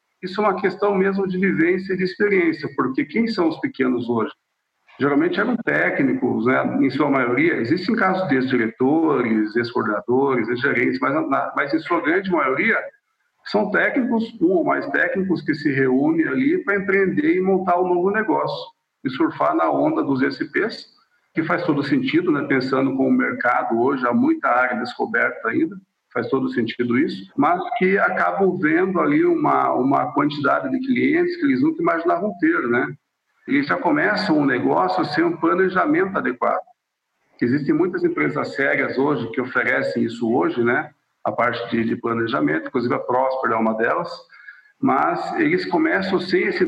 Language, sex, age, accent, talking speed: Portuguese, male, 50-69, Brazilian, 165 wpm